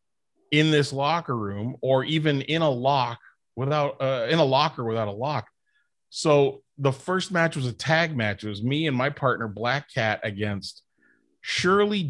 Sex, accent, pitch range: male, American, 110-150 Hz